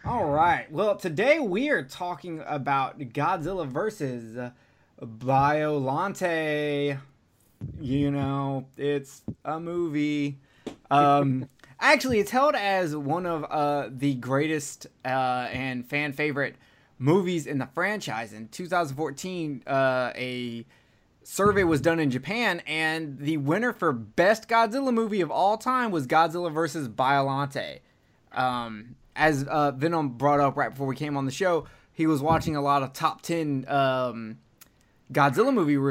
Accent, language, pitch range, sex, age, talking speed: American, English, 135-175 Hz, male, 20-39, 135 wpm